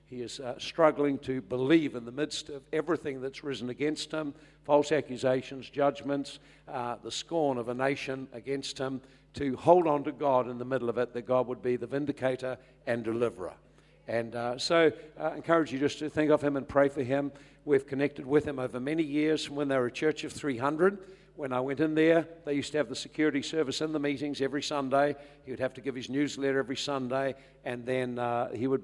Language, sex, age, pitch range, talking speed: English, male, 60-79, 130-150 Hz, 215 wpm